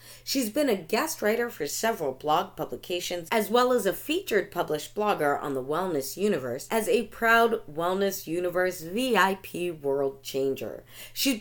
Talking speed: 155 wpm